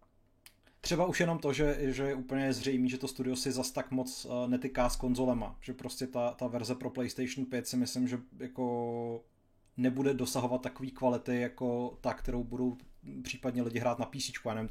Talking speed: 190 wpm